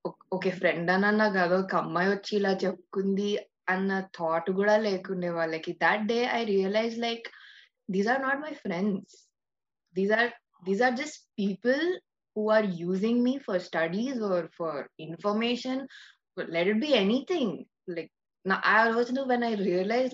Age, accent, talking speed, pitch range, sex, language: 20-39, native, 145 wpm, 175-215 Hz, female, Telugu